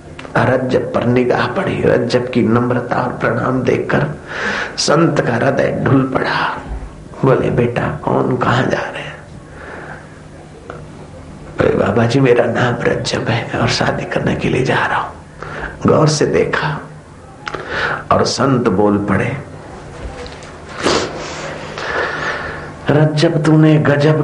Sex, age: male, 50-69